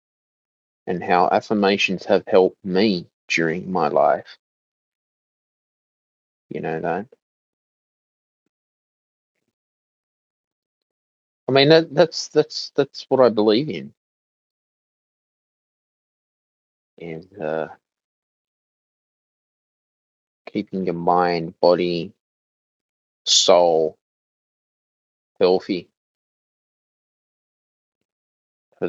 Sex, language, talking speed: male, English, 65 wpm